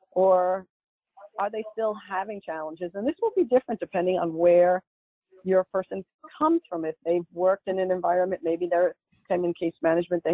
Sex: female